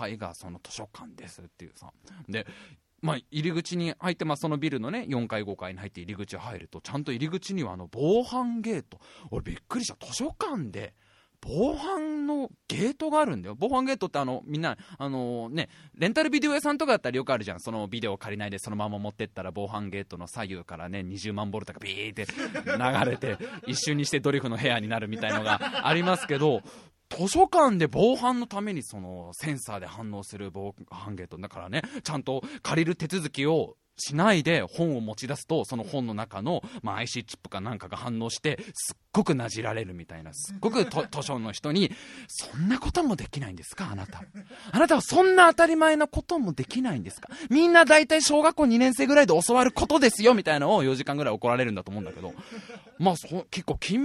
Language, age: Japanese, 20-39